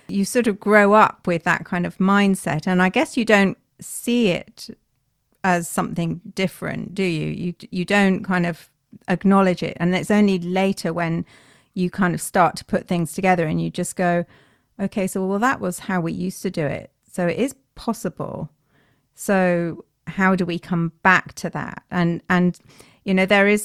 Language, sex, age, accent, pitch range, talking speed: English, female, 40-59, British, 155-185 Hz, 190 wpm